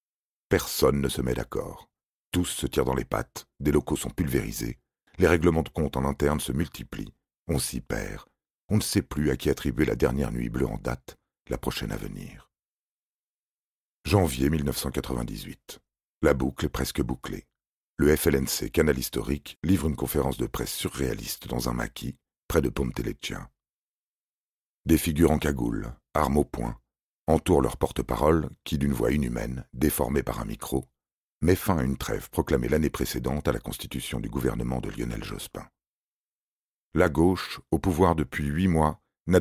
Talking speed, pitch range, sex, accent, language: 165 wpm, 65-80 Hz, male, French, French